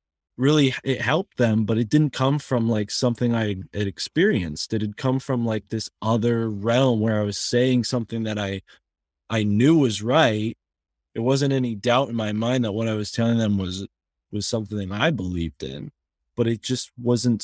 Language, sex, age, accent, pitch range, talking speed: English, male, 20-39, American, 105-130 Hz, 195 wpm